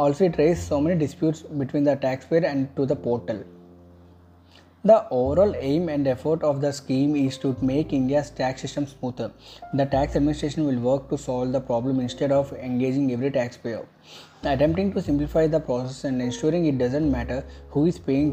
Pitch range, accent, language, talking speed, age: 125-145 Hz, Indian, English, 180 wpm, 20-39